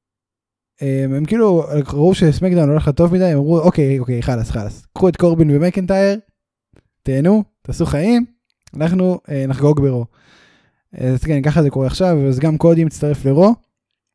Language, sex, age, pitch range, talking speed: Hebrew, male, 10-29, 130-170 Hz, 155 wpm